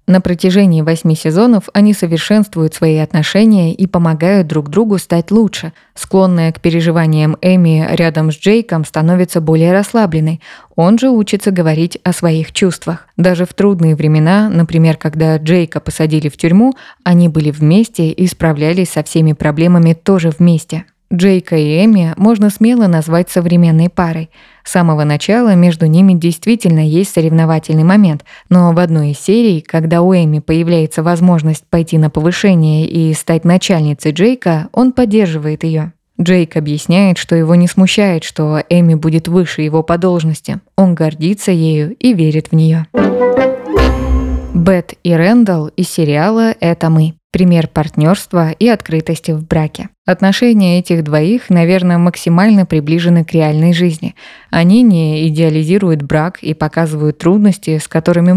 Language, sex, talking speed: Russian, female, 145 wpm